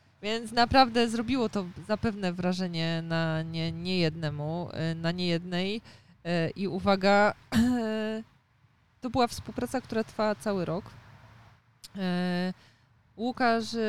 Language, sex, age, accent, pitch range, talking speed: Polish, female, 20-39, native, 165-220 Hz, 90 wpm